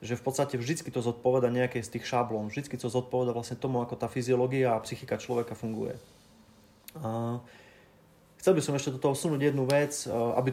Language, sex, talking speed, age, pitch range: Slovak, male, 180 wpm, 30-49, 115-135 Hz